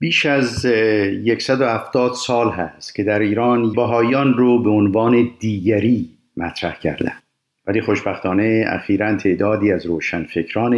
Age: 50-69